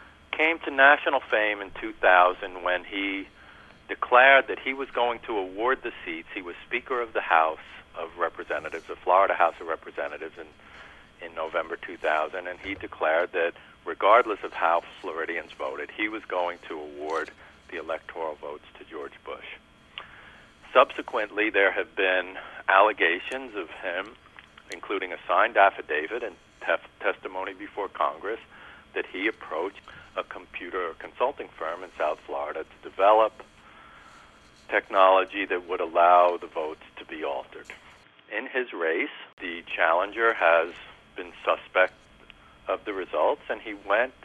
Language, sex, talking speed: English, male, 140 wpm